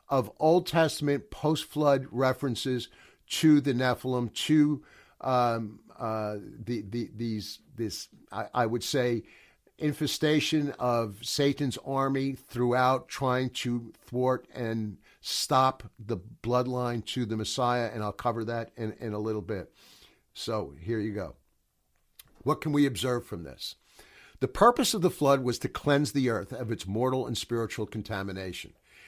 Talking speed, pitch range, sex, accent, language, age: 140 wpm, 115-140 Hz, male, American, English, 50-69